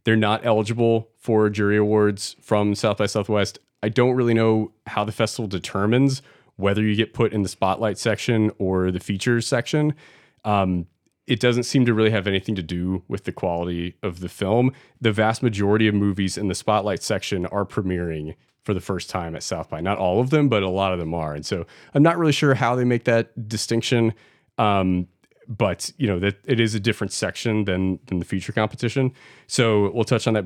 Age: 30-49